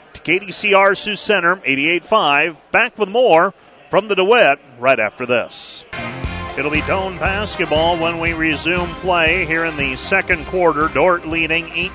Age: 40-59